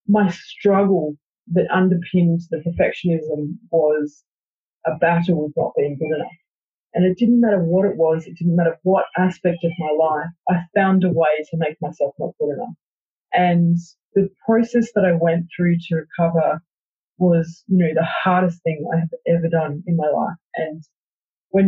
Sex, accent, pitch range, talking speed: female, Australian, 165-200 Hz, 175 wpm